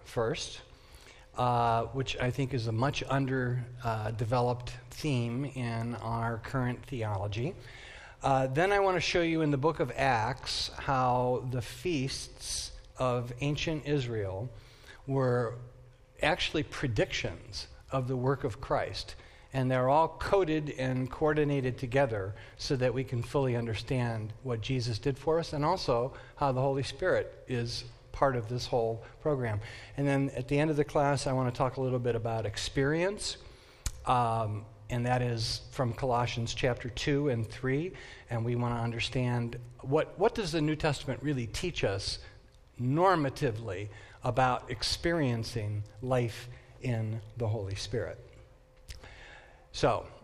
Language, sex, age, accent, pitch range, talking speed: English, male, 50-69, American, 115-140 Hz, 145 wpm